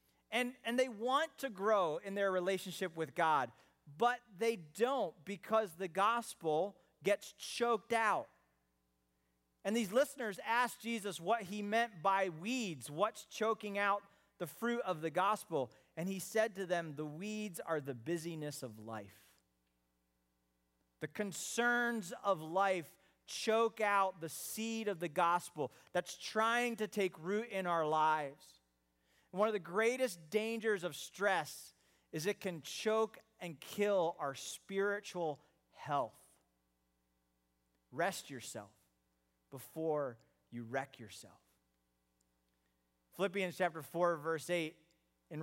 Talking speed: 130 wpm